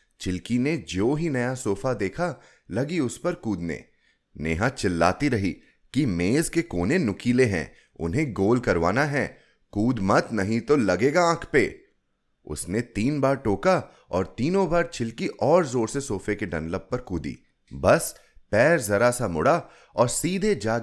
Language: Hindi